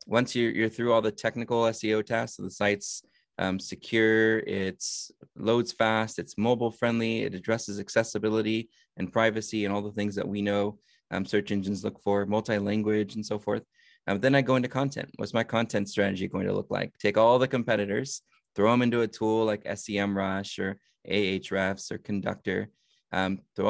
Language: English